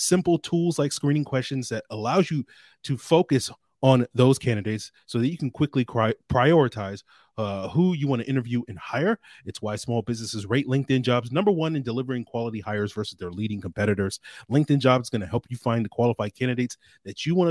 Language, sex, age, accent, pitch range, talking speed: English, male, 30-49, American, 110-140 Hz, 200 wpm